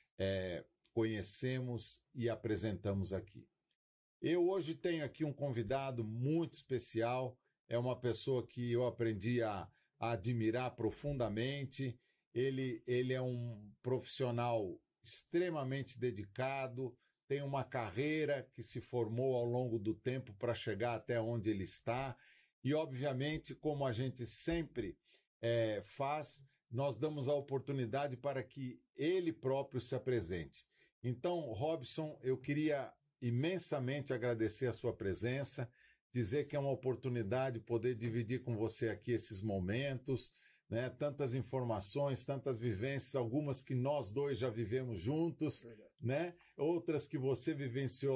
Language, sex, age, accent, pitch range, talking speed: Portuguese, male, 50-69, Brazilian, 115-140 Hz, 125 wpm